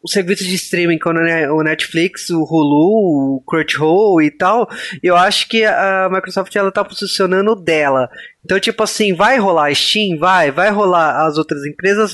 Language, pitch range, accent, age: Portuguese, 170-225 Hz, Brazilian, 20-39